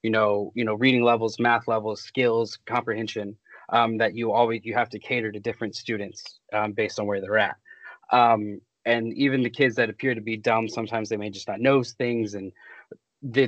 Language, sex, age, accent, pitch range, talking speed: English, male, 20-39, American, 110-130 Hz, 200 wpm